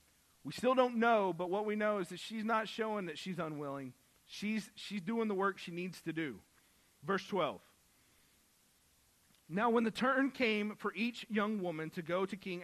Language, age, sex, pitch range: English, 40-59, male, 170-220 Hz